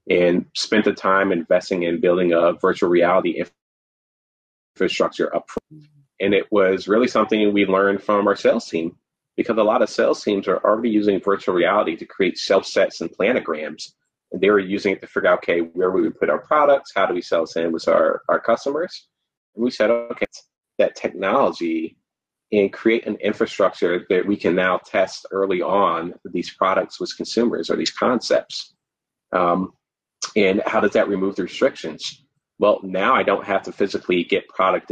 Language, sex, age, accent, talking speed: English, male, 30-49, American, 180 wpm